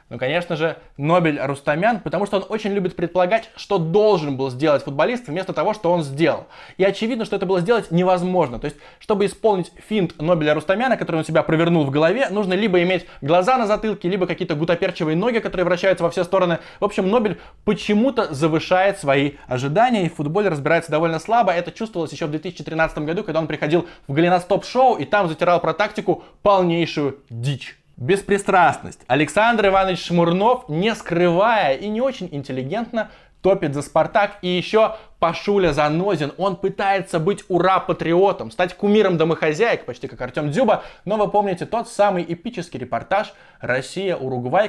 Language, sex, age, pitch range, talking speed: Russian, male, 20-39, 155-200 Hz, 165 wpm